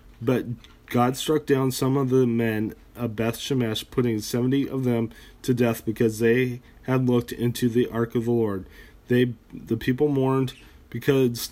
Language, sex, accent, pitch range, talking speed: English, male, American, 115-135 Hz, 165 wpm